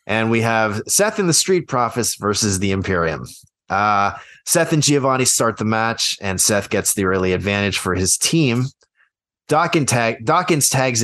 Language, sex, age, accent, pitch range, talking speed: English, male, 30-49, American, 105-135 Hz, 165 wpm